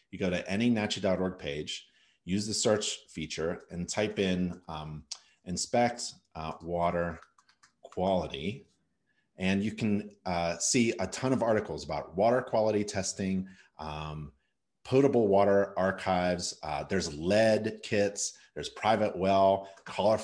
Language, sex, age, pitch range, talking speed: English, male, 30-49, 85-105 Hz, 130 wpm